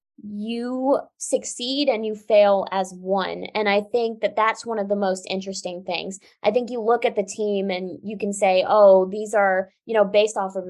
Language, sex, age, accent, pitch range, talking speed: English, female, 20-39, American, 190-235 Hz, 210 wpm